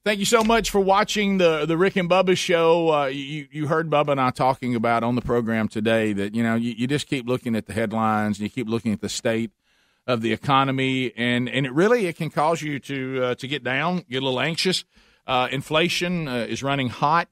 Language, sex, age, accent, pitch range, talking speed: English, male, 40-59, American, 115-150 Hz, 240 wpm